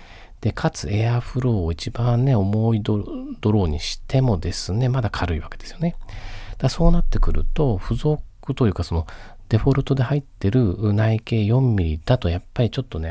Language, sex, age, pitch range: Japanese, male, 40-59, 90-120 Hz